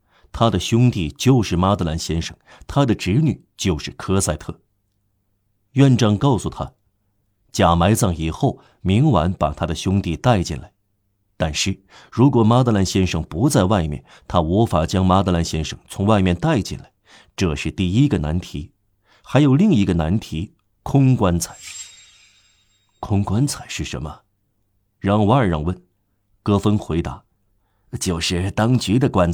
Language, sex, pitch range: Chinese, male, 90-105 Hz